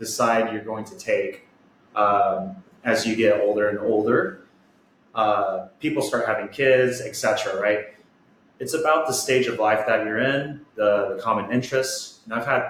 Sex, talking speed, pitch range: male, 165 wpm, 110-130 Hz